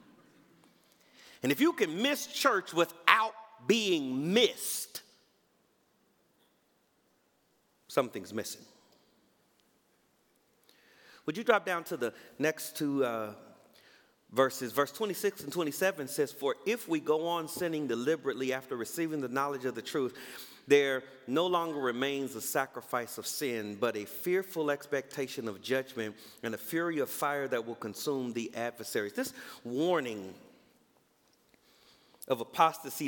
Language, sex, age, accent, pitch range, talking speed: English, male, 40-59, American, 130-175 Hz, 120 wpm